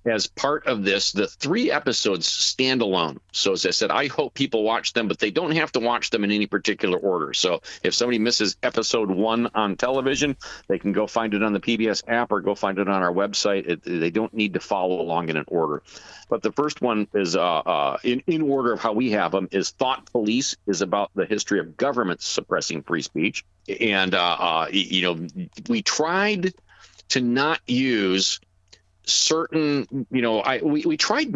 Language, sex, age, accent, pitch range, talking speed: English, male, 50-69, American, 95-130 Hz, 205 wpm